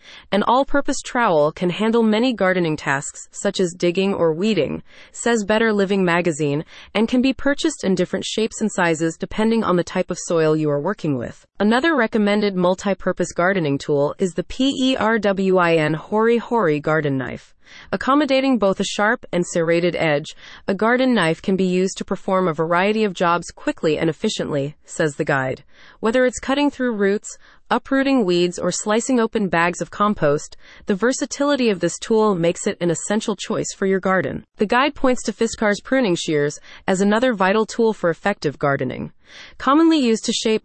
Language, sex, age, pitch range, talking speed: English, female, 30-49, 170-225 Hz, 175 wpm